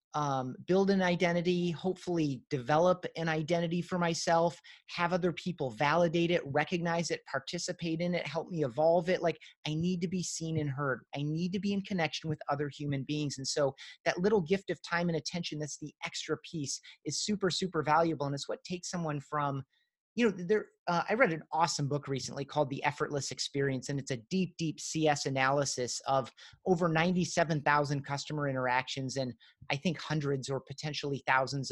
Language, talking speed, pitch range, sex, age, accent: English, 185 wpm, 135-170 Hz, male, 30-49, American